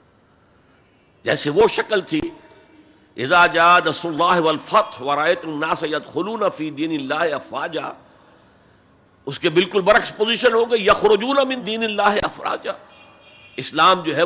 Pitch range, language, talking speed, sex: 160-260 Hz, Urdu, 40 wpm, male